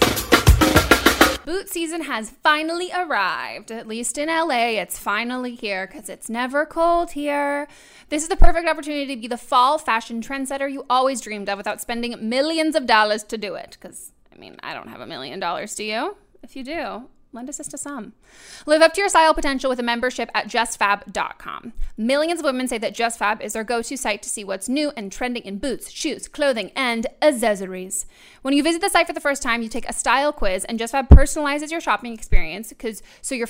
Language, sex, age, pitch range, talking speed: English, female, 20-39, 225-295 Hz, 200 wpm